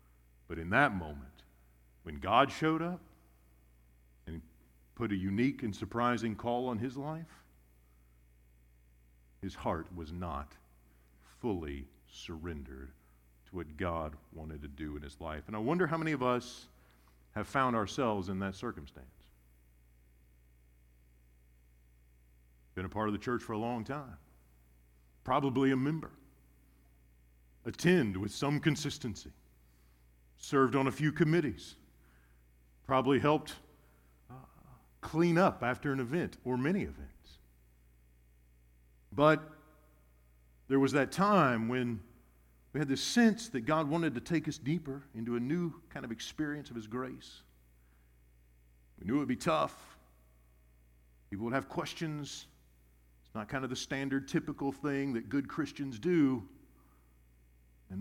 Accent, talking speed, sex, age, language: American, 130 wpm, male, 50-69, English